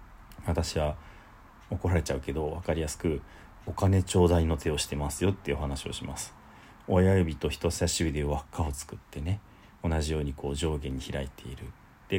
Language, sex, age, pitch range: Japanese, male, 40-59, 75-95 Hz